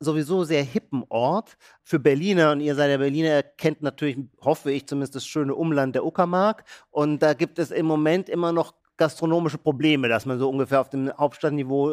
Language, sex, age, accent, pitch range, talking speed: German, male, 40-59, German, 140-170 Hz, 190 wpm